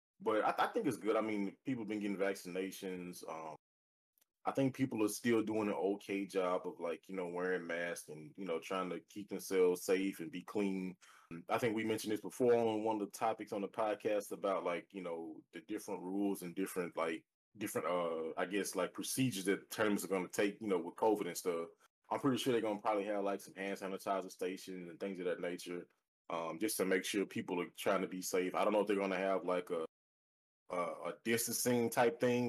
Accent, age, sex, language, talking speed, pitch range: American, 20-39, male, English, 235 wpm, 90-110 Hz